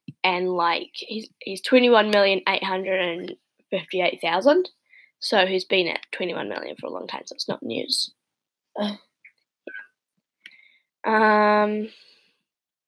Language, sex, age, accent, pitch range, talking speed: English, female, 10-29, Australian, 215-245 Hz, 140 wpm